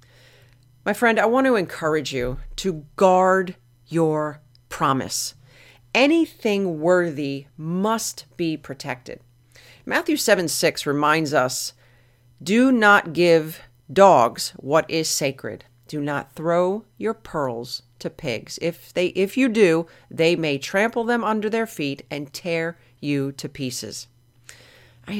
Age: 40-59